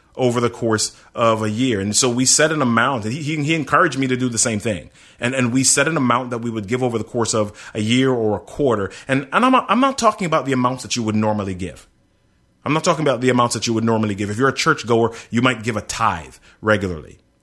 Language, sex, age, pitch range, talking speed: English, male, 30-49, 110-140 Hz, 265 wpm